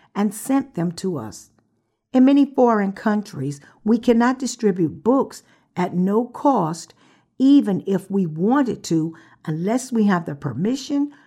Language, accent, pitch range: English, American, 165-240 Hz